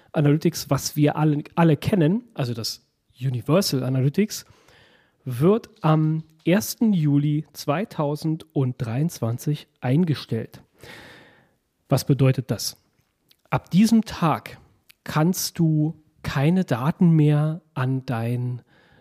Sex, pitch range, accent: male, 135-160 Hz, German